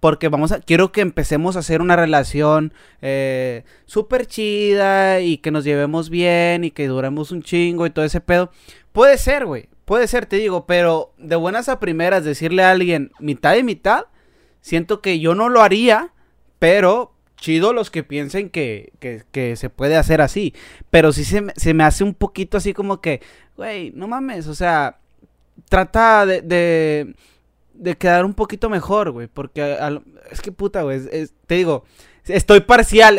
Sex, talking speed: male, 180 wpm